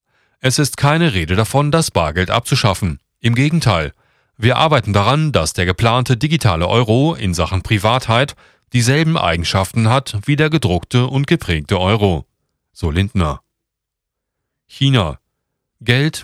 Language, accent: German, German